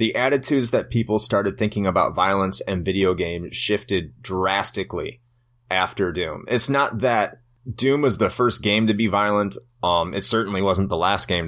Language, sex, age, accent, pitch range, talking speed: English, male, 30-49, American, 95-120 Hz, 175 wpm